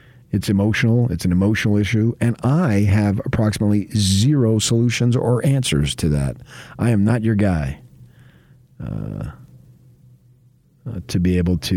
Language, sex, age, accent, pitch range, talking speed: English, male, 40-59, American, 95-130 Hz, 135 wpm